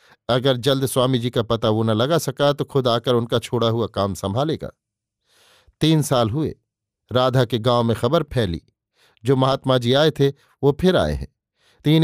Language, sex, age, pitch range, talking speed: Hindi, male, 50-69, 120-145 Hz, 185 wpm